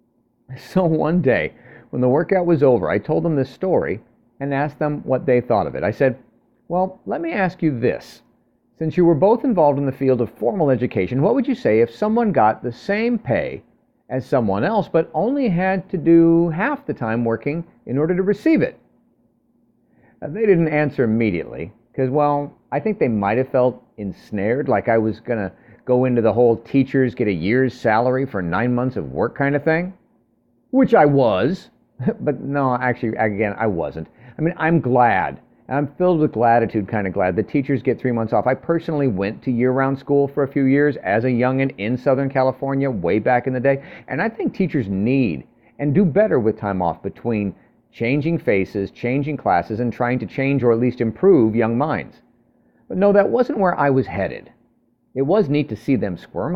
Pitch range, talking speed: 120-160 Hz, 200 wpm